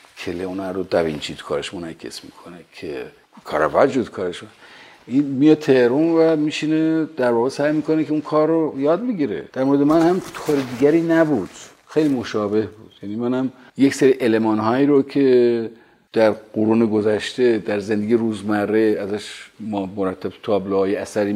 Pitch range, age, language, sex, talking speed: 110-145 Hz, 50-69, Persian, male, 155 wpm